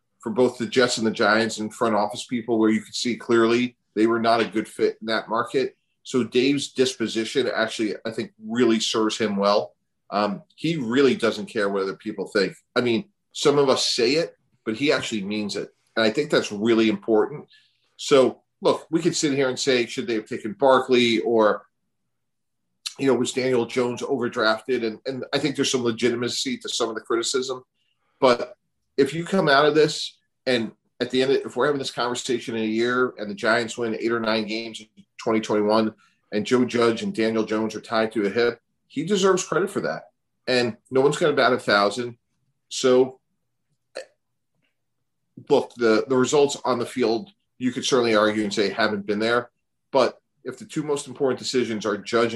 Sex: male